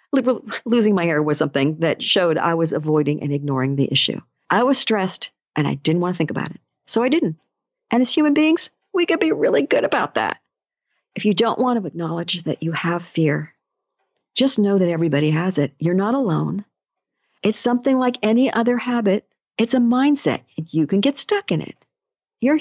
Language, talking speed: English, 195 wpm